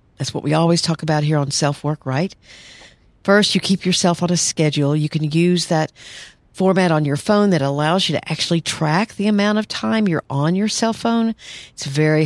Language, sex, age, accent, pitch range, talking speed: English, female, 50-69, American, 140-185 Hz, 210 wpm